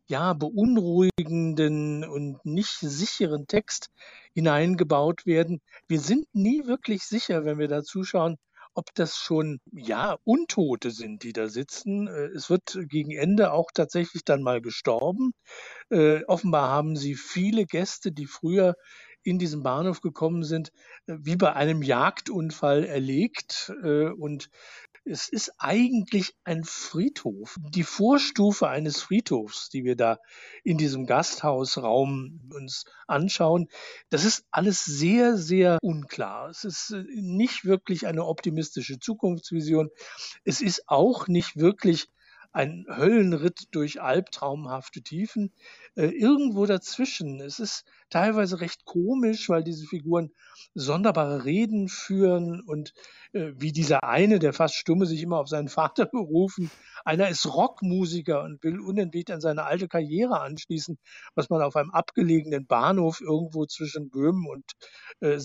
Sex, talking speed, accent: male, 135 wpm, German